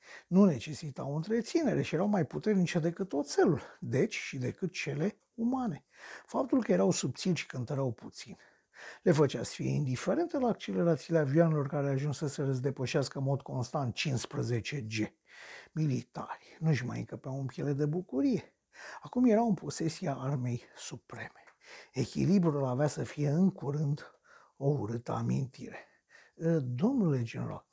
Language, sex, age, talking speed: Romanian, male, 60-79, 140 wpm